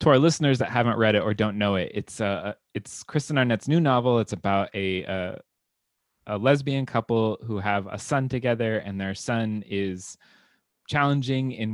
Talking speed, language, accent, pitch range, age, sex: 190 wpm, English, American, 95-125 Hz, 20-39, male